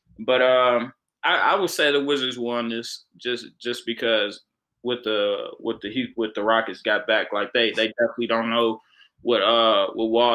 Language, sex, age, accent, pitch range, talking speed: English, male, 20-39, American, 115-130 Hz, 185 wpm